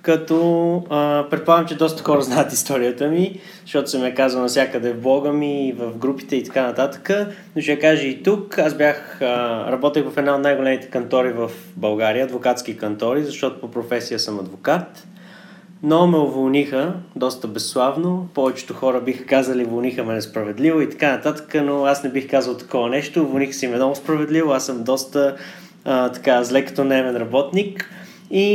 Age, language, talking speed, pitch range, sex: 20-39, Bulgarian, 175 wpm, 125-155 Hz, male